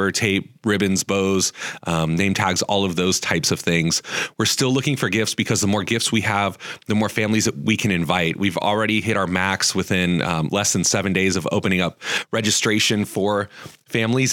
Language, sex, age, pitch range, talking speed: English, male, 30-49, 95-110 Hz, 195 wpm